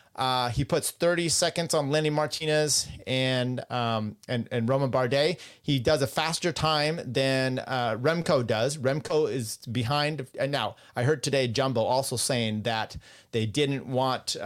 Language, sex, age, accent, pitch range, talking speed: English, male, 30-49, American, 120-150 Hz, 160 wpm